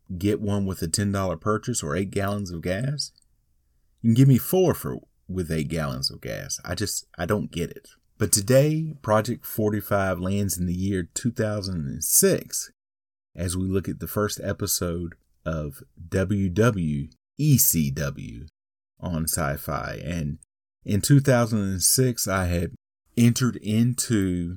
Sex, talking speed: male, 135 wpm